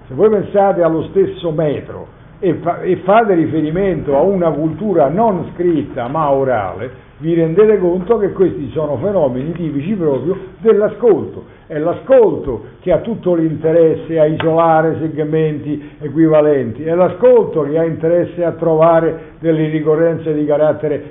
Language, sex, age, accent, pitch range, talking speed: Italian, male, 60-79, native, 125-170 Hz, 135 wpm